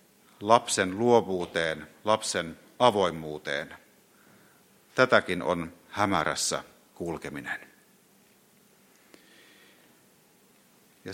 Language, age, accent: Finnish, 50-69, native